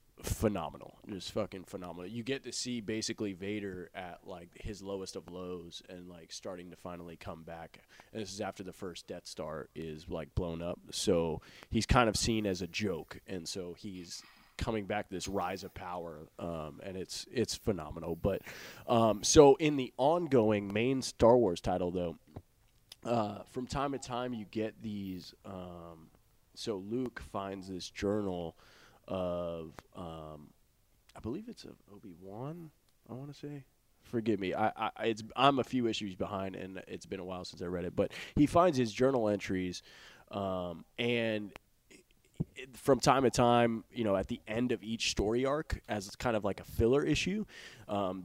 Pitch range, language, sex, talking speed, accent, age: 90-115 Hz, English, male, 180 wpm, American, 20-39